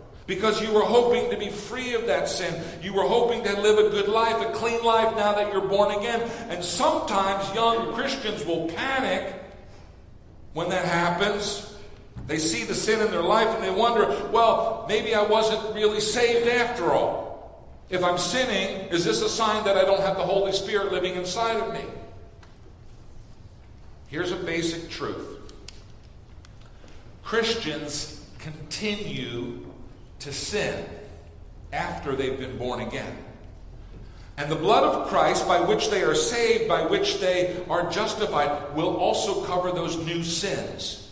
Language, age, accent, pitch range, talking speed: English, 50-69, American, 145-215 Hz, 155 wpm